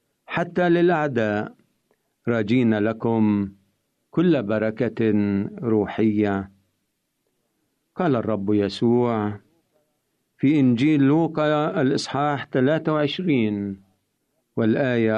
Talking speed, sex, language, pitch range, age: 65 wpm, male, Arabic, 110-155 Hz, 50-69